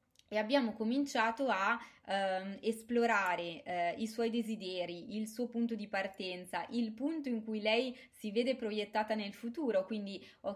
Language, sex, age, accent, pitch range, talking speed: Italian, female, 20-39, native, 195-240 Hz, 155 wpm